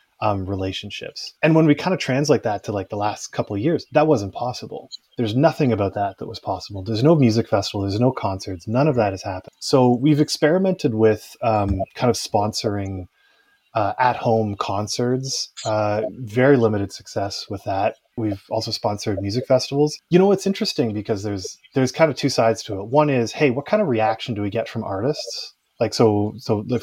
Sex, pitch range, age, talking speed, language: male, 105-135 Hz, 20-39, 200 wpm, English